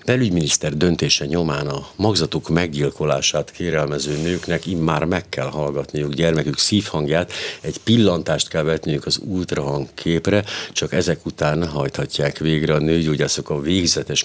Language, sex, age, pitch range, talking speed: Hungarian, male, 60-79, 75-85 Hz, 120 wpm